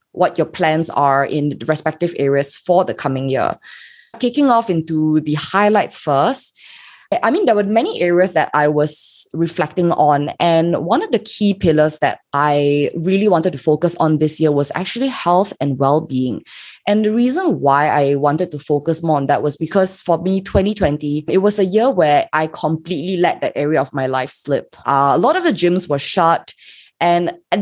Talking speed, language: 195 wpm, English